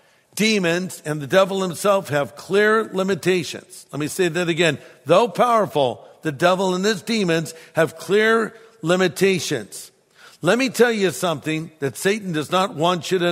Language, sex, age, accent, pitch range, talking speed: English, male, 60-79, American, 160-195 Hz, 160 wpm